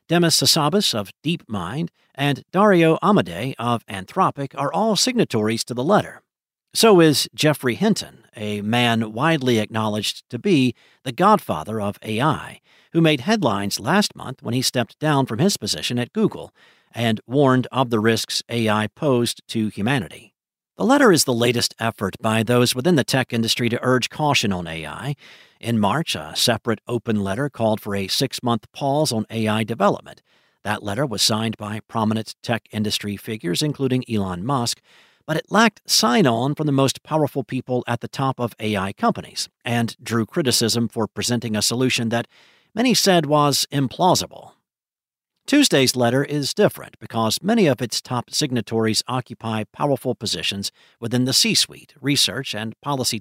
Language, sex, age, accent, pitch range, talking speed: English, male, 50-69, American, 110-140 Hz, 160 wpm